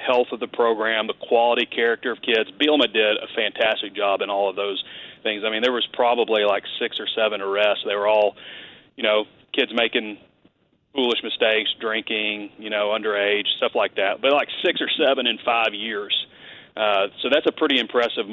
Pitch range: 105-120 Hz